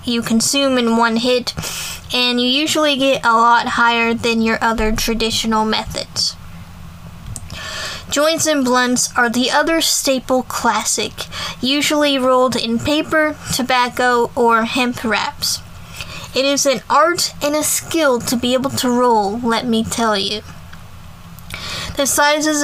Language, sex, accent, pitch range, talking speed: English, female, American, 230-275 Hz, 135 wpm